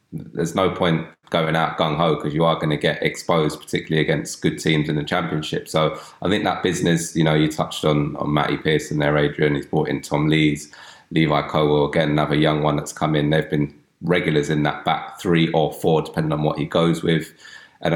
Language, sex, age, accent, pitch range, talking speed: English, male, 20-39, British, 75-85 Hz, 220 wpm